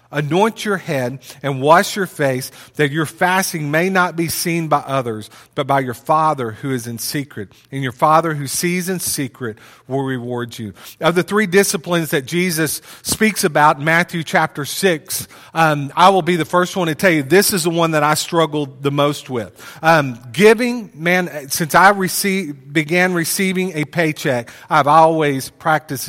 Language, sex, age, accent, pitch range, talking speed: English, male, 40-59, American, 140-180 Hz, 180 wpm